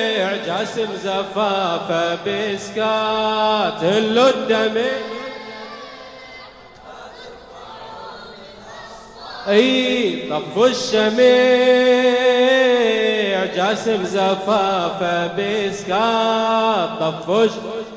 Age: 30-49